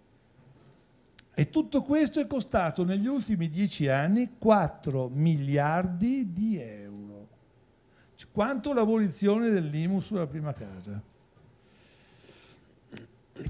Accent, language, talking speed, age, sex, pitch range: native, Italian, 100 wpm, 60-79, male, 150-220 Hz